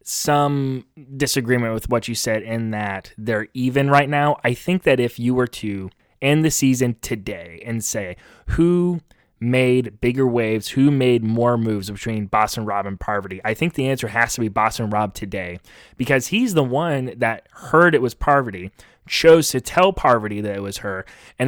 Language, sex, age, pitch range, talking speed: English, male, 20-39, 115-150 Hz, 185 wpm